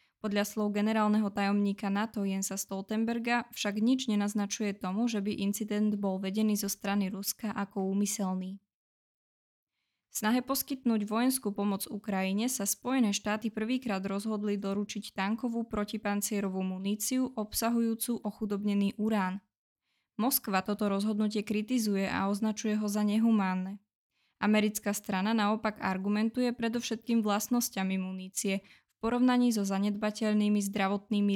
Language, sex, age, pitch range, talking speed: Czech, female, 20-39, 195-220 Hz, 115 wpm